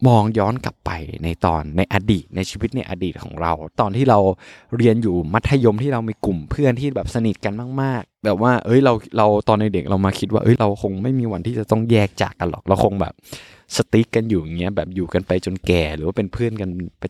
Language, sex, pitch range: Thai, male, 95-125 Hz